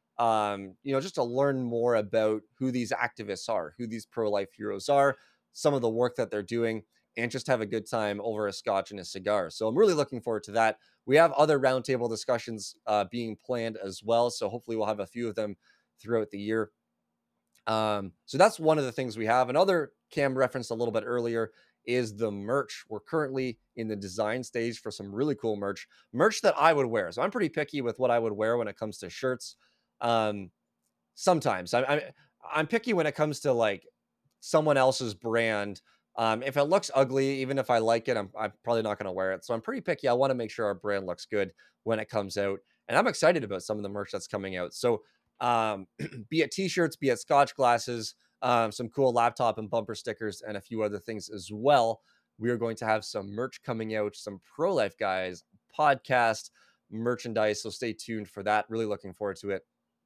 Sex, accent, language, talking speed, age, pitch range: male, American, English, 220 wpm, 20-39, 105-125 Hz